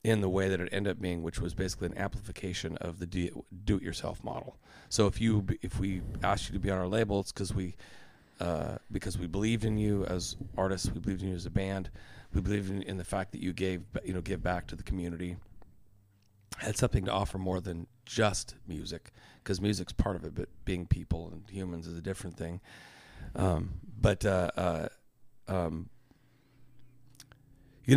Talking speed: 195 wpm